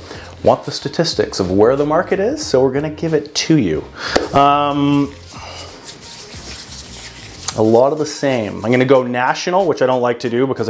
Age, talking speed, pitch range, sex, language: 30-49, 180 wpm, 105-130 Hz, male, English